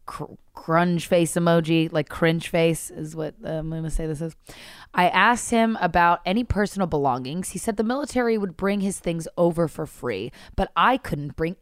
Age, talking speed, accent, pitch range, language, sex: 20-39, 190 wpm, American, 160-210 Hz, English, female